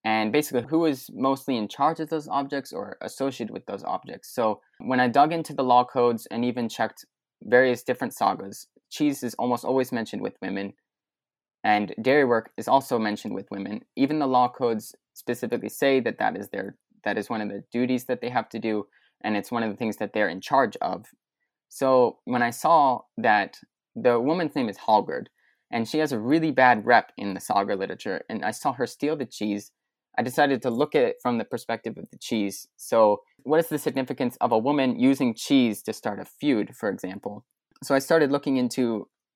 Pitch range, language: 115-150 Hz, English